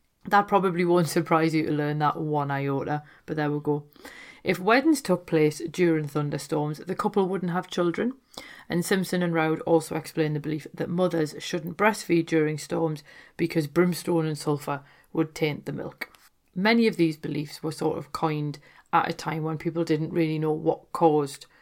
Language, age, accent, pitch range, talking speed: English, 40-59, British, 155-175 Hz, 180 wpm